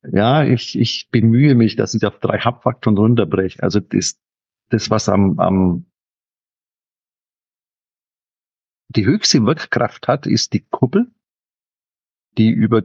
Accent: German